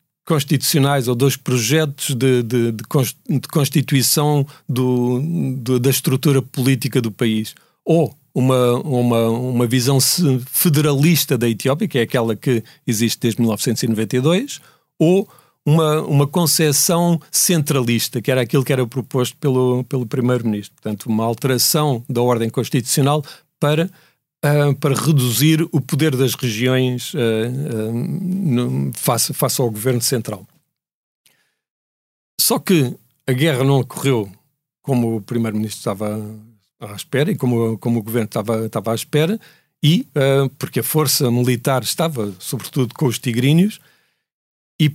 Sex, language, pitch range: male, Portuguese, 120-150 Hz